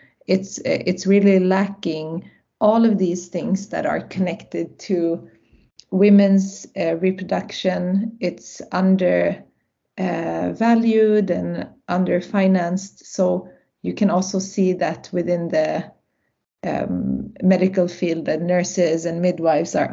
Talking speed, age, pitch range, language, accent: 110 wpm, 30-49, 175-200 Hz, English, Swedish